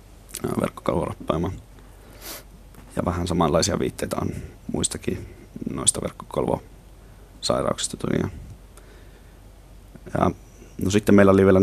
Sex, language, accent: male, Finnish, native